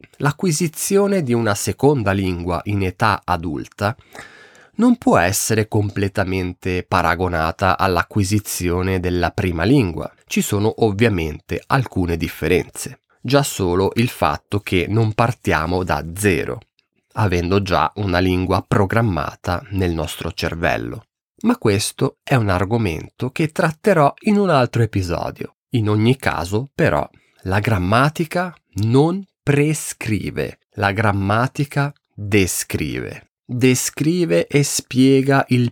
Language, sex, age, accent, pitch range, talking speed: Italian, male, 30-49, native, 95-135 Hz, 110 wpm